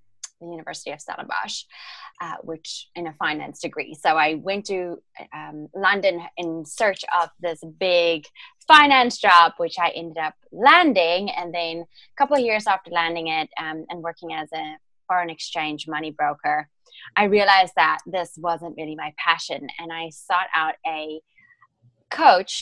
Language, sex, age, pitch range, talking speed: English, female, 20-39, 160-185 Hz, 160 wpm